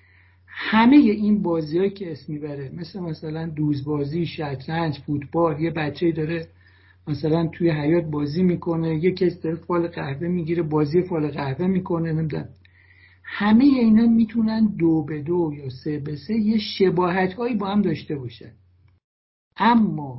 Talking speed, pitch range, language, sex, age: 135 wpm, 140-195 Hz, Persian, male, 60-79